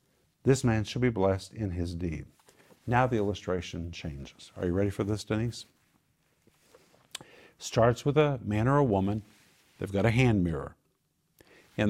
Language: English